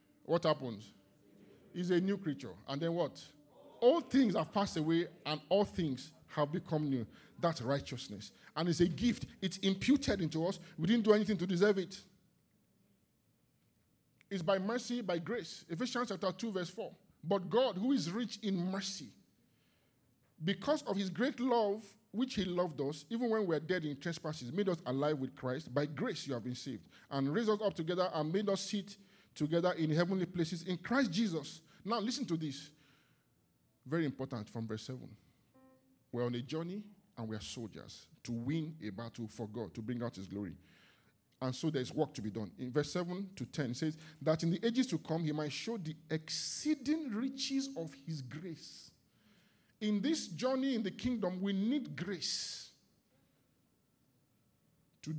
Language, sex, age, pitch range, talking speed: English, male, 50-69, 135-200 Hz, 175 wpm